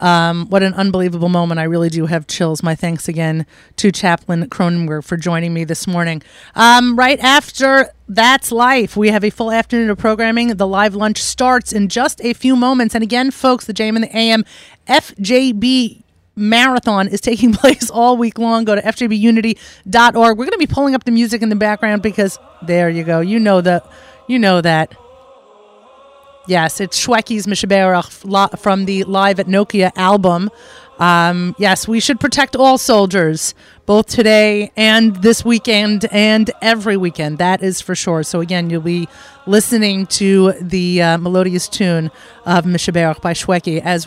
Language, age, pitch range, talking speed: English, 30-49, 185-235 Hz, 170 wpm